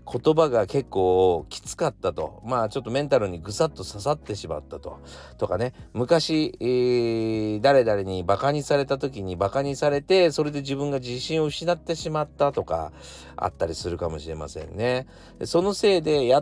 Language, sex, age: Japanese, male, 40-59